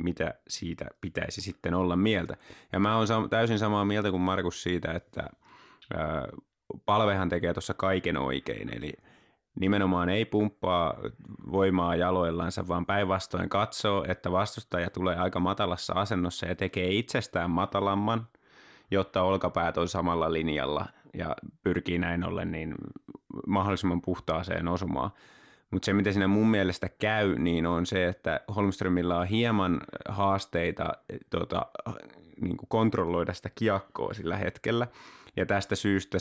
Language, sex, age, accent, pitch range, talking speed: Finnish, male, 20-39, native, 90-100 Hz, 125 wpm